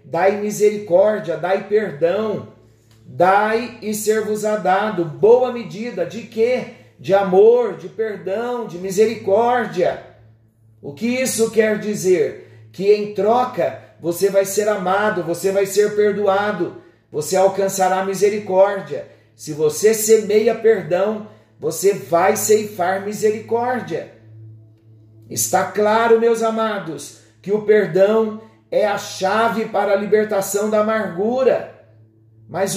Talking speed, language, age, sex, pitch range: 115 wpm, Portuguese, 50-69, male, 145-215 Hz